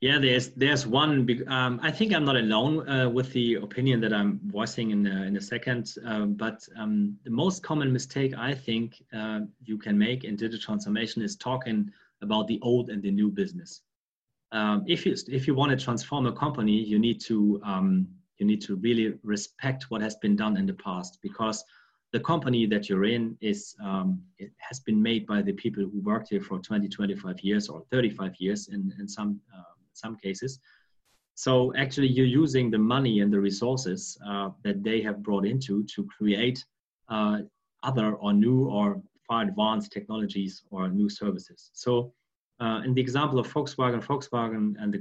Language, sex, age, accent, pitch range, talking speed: English, male, 30-49, German, 105-130 Hz, 190 wpm